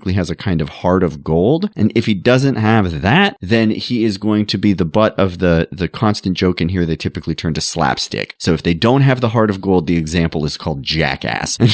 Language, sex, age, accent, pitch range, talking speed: English, male, 30-49, American, 85-120 Hz, 245 wpm